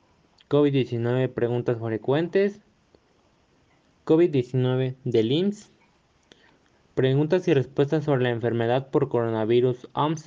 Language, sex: Spanish, male